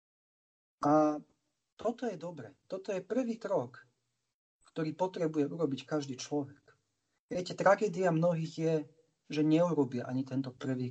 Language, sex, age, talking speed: Slovak, male, 40-59, 120 wpm